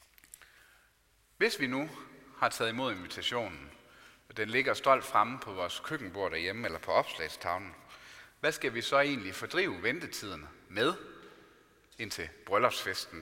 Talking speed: 130 wpm